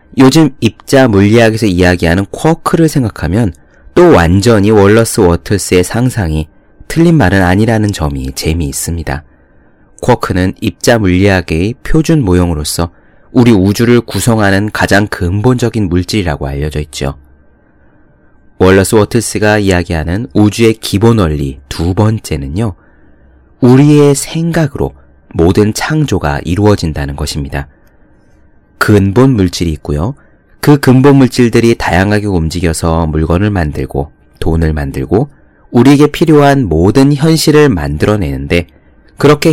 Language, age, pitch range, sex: Korean, 30-49, 80-120 Hz, male